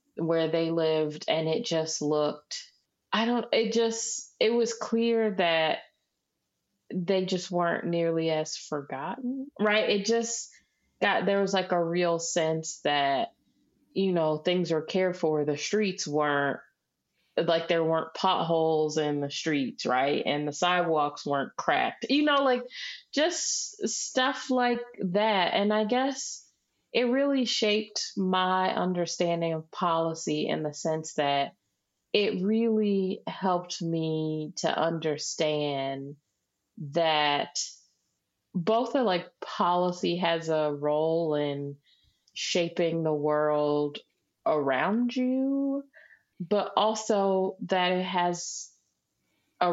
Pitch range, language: 155-210 Hz, English